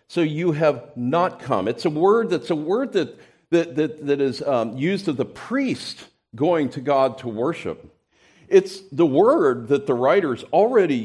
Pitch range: 115-150 Hz